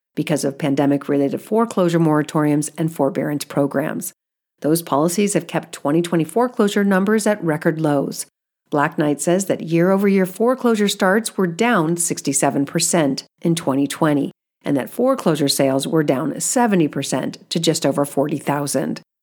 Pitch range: 145-185 Hz